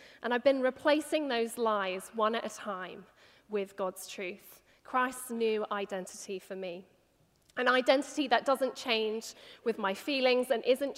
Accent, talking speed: British, 155 wpm